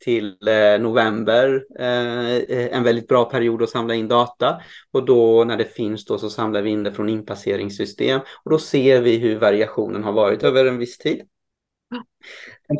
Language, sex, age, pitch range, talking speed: Swedish, male, 30-49, 110-125 Hz, 170 wpm